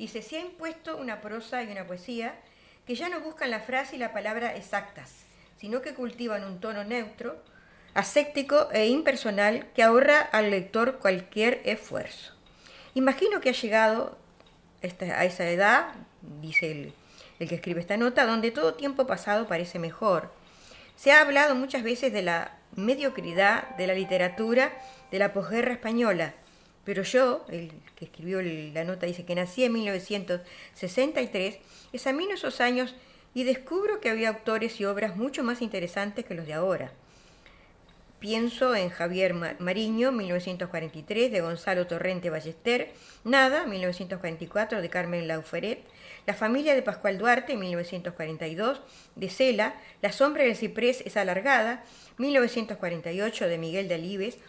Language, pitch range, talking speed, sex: Spanish, 180-255 Hz, 145 wpm, female